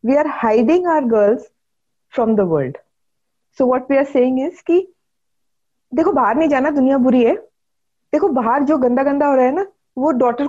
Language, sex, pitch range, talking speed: English, female, 225-300 Hz, 190 wpm